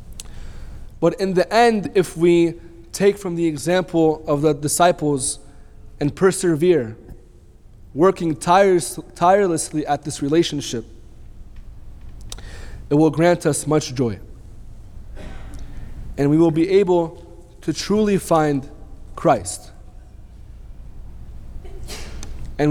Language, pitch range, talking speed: English, 105-165 Hz, 95 wpm